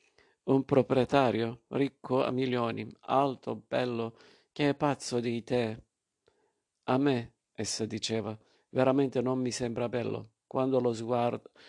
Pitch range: 115-125 Hz